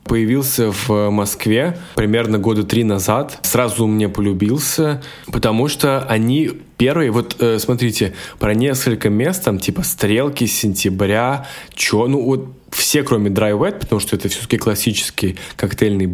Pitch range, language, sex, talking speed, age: 105-130 Hz, Russian, male, 125 wpm, 20-39